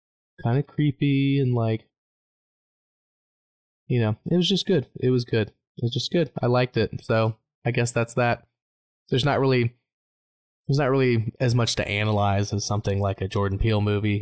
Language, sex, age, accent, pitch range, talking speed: English, male, 20-39, American, 105-120 Hz, 180 wpm